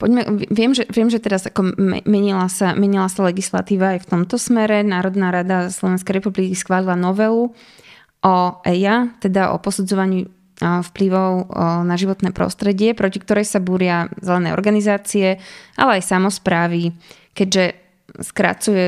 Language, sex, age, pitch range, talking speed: Slovak, female, 20-39, 180-205 Hz, 125 wpm